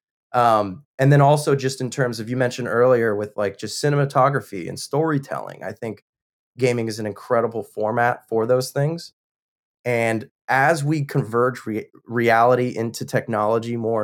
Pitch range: 110-135 Hz